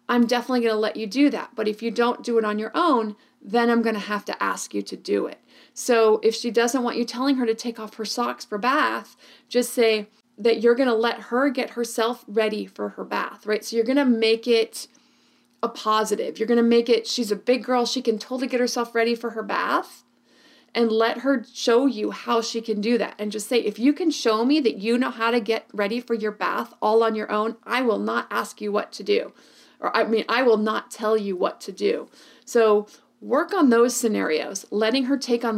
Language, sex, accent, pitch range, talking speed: English, female, American, 210-240 Hz, 235 wpm